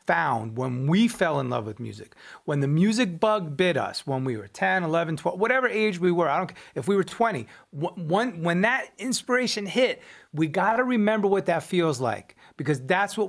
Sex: male